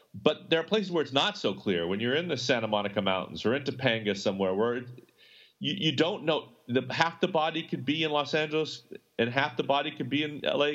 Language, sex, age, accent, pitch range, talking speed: English, male, 40-59, American, 125-165 Hz, 230 wpm